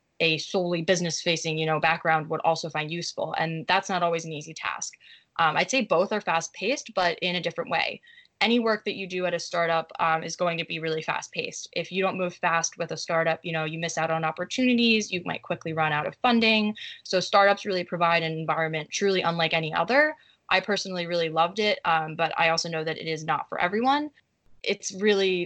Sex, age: female, 20-39